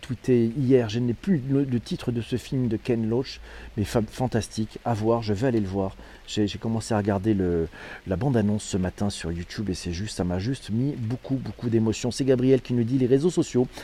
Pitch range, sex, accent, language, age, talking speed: 105-135 Hz, male, French, French, 40-59, 225 wpm